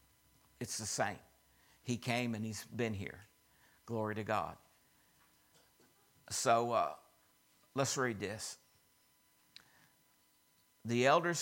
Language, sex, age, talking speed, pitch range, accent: English, male, 60-79, 100 wpm, 110-130 Hz, American